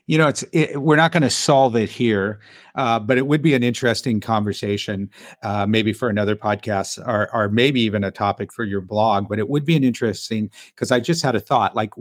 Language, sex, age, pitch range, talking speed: English, male, 50-69, 110-160 Hz, 230 wpm